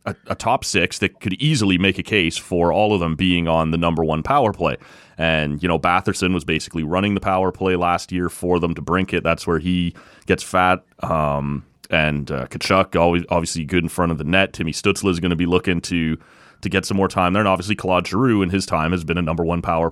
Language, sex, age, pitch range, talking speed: English, male, 30-49, 90-120 Hz, 245 wpm